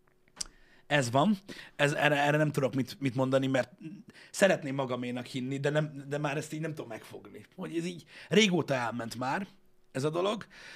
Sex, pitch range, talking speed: male, 125-160 Hz, 180 wpm